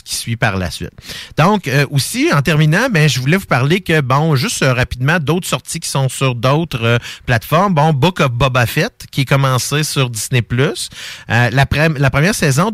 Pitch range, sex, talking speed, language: 120-155 Hz, male, 205 wpm, French